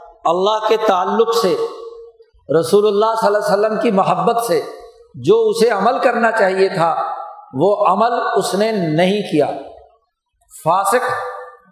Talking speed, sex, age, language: 135 wpm, male, 50-69, Urdu